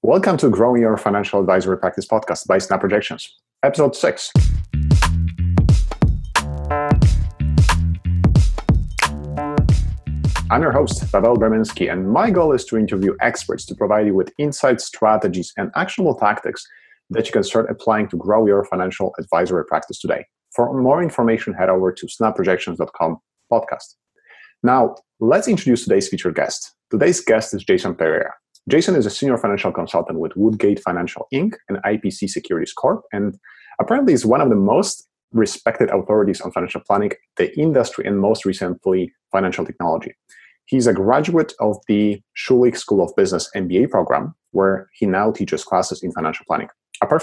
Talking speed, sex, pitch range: 150 wpm, male, 90-115 Hz